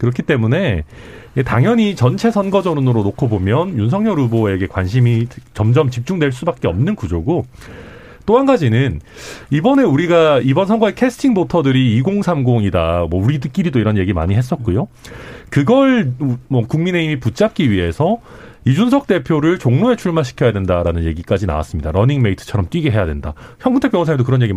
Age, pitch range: 40-59, 115-185 Hz